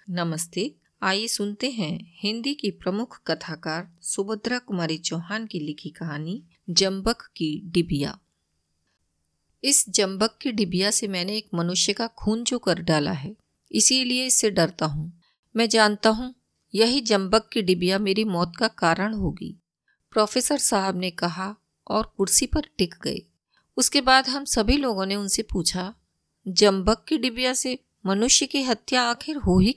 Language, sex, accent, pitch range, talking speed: Hindi, female, native, 180-230 Hz, 145 wpm